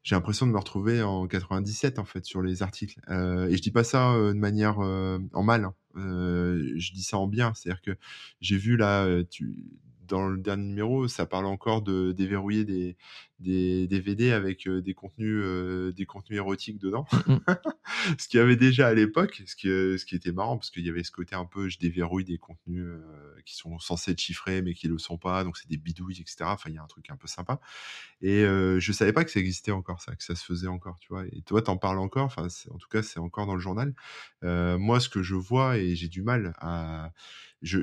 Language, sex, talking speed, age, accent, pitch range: French, male, 250 wpm, 20-39, French, 90-105 Hz